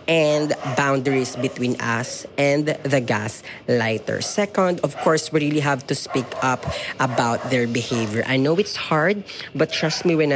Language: Filipino